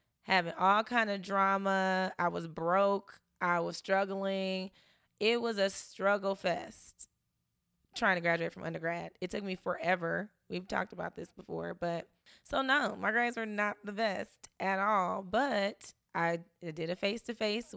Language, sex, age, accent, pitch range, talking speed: English, female, 20-39, American, 170-200 Hz, 155 wpm